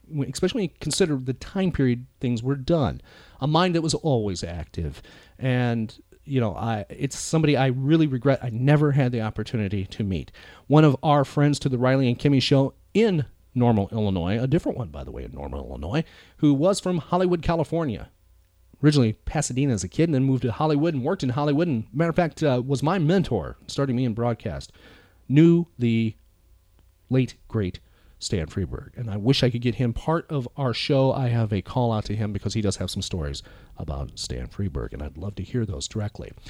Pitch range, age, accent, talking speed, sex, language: 105-155 Hz, 40-59, American, 200 wpm, male, English